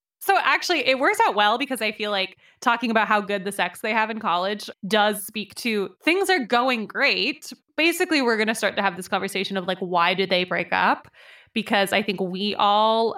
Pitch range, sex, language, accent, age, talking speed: 195-240 Hz, female, English, American, 20-39, 220 wpm